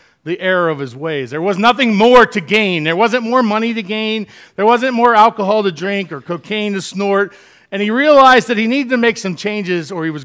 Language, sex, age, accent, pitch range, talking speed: English, male, 40-59, American, 150-220 Hz, 235 wpm